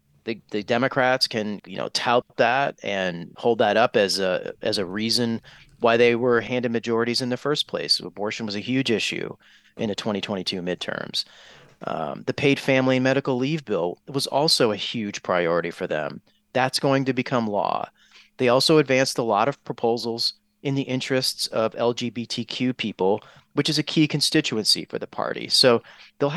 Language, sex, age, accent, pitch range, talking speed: English, male, 30-49, American, 110-135 Hz, 175 wpm